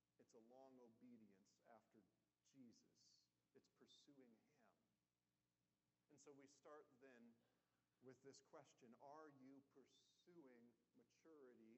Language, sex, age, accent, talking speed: English, male, 40-59, American, 100 wpm